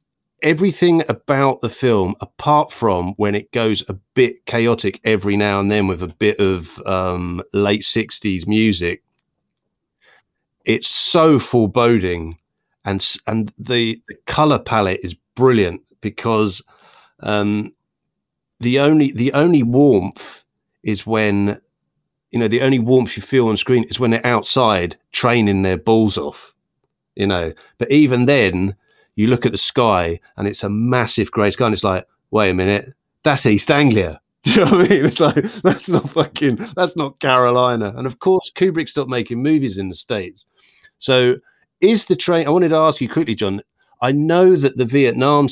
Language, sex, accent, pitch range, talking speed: English, male, British, 100-135 Hz, 165 wpm